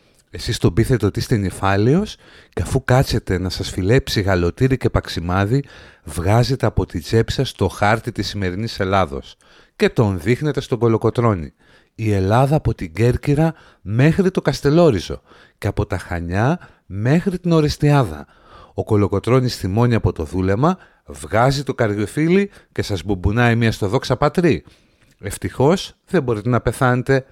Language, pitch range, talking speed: Greek, 100-135 Hz, 145 wpm